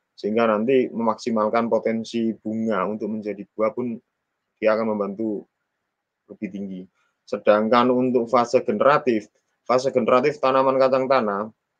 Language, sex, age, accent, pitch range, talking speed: Indonesian, male, 20-39, native, 110-130 Hz, 115 wpm